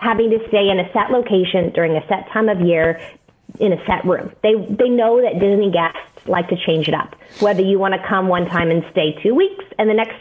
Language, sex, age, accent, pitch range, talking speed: English, female, 30-49, American, 175-225 Hz, 240 wpm